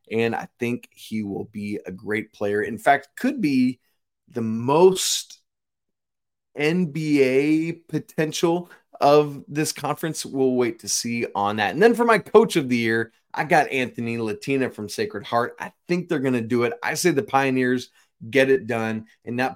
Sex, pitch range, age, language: male, 115-155 Hz, 20-39, English